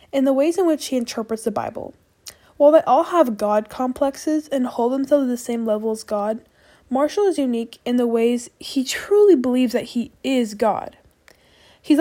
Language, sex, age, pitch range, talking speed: English, female, 10-29, 225-280 Hz, 190 wpm